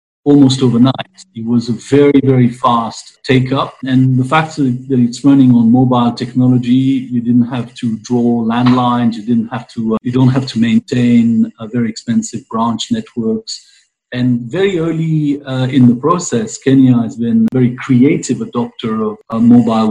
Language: English